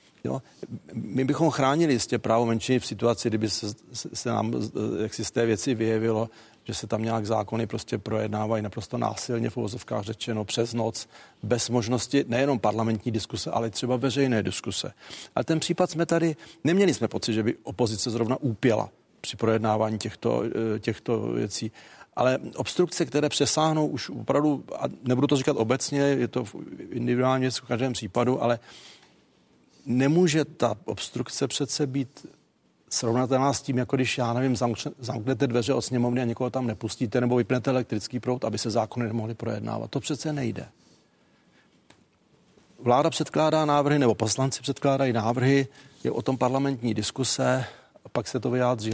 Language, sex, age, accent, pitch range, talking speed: Czech, male, 40-59, native, 115-135 Hz, 155 wpm